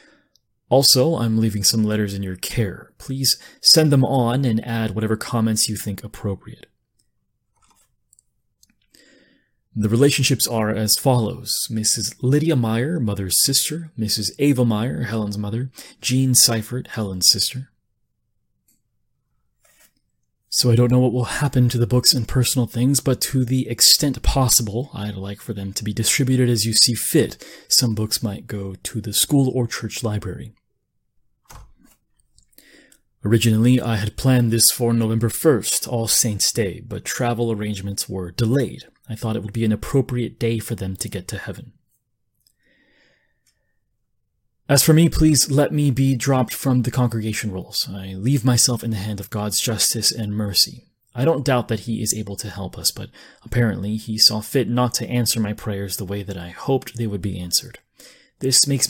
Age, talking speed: 30-49, 165 wpm